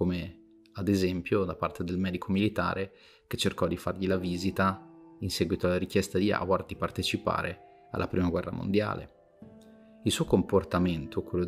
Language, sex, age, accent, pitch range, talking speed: Italian, male, 30-49, native, 90-110 Hz, 155 wpm